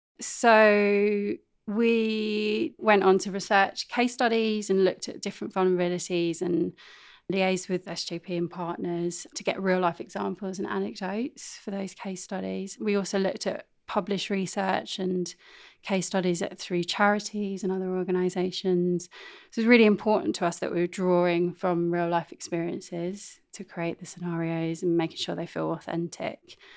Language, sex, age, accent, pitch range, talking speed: English, female, 30-49, British, 175-205 Hz, 155 wpm